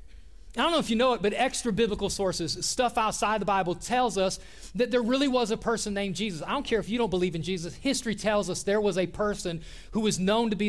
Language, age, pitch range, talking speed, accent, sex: English, 30-49, 150-210 Hz, 260 wpm, American, male